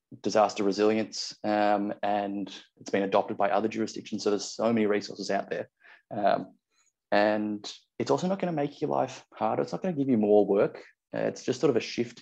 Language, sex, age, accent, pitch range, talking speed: English, male, 20-39, Australian, 100-115 Hz, 210 wpm